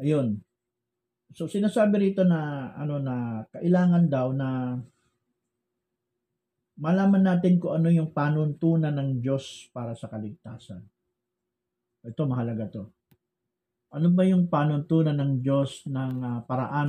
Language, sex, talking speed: Filipino, male, 115 wpm